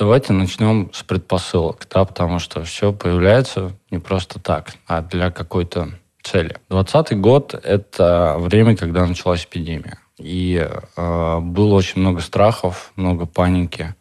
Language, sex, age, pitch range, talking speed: Russian, male, 20-39, 85-95 Hz, 135 wpm